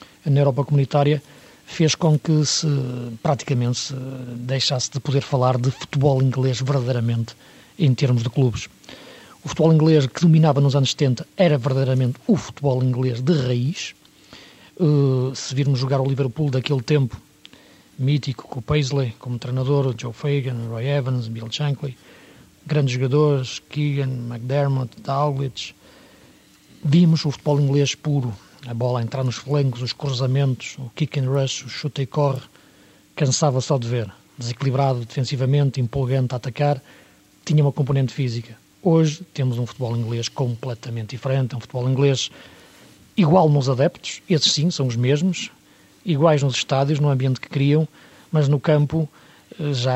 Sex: male